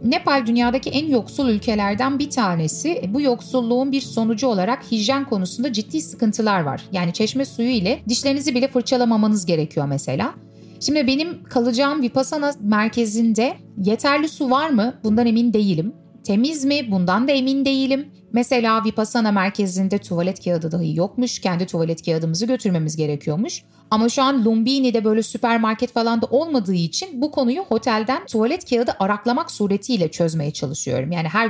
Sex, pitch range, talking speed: female, 190-255 Hz, 145 wpm